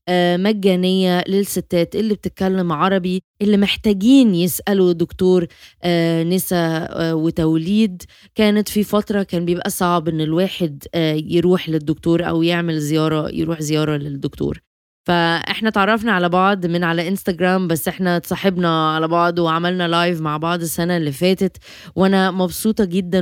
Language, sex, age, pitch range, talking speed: Arabic, female, 20-39, 170-195 Hz, 125 wpm